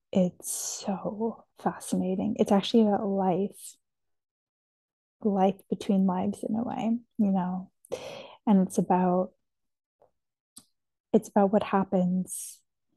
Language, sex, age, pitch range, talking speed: English, female, 20-39, 185-210 Hz, 100 wpm